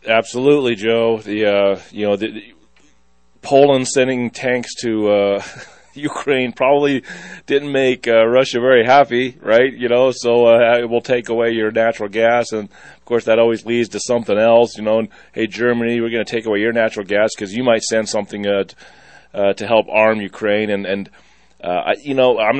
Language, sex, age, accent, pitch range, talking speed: English, male, 30-49, American, 100-120 Hz, 195 wpm